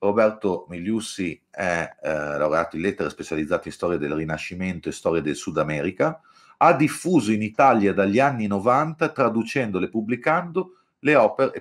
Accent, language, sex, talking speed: native, Italian, male, 135 wpm